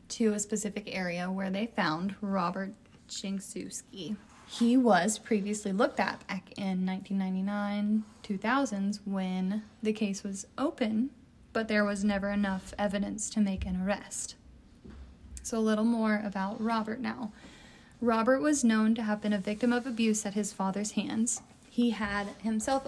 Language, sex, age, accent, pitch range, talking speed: English, female, 20-39, American, 205-245 Hz, 145 wpm